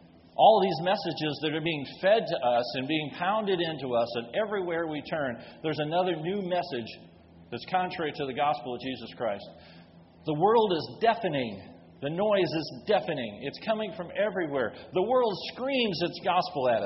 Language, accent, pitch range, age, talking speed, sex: English, American, 120-185 Hz, 40-59, 170 wpm, male